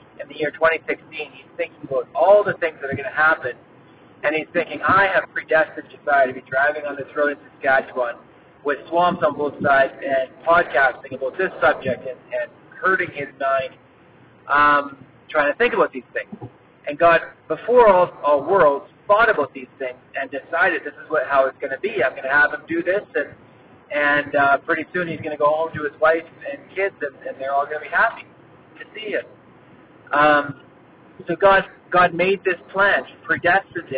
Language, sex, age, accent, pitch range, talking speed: English, male, 30-49, American, 140-170 Hz, 200 wpm